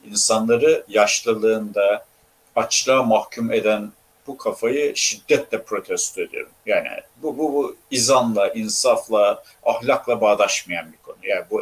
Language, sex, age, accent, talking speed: Turkish, male, 60-79, native, 115 wpm